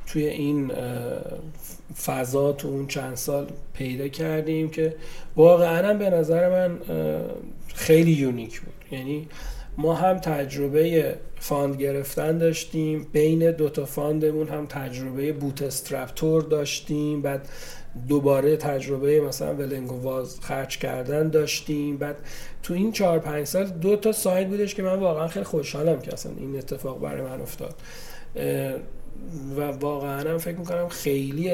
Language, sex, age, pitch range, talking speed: Persian, male, 40-59, 140-160 Hz, 125 wpm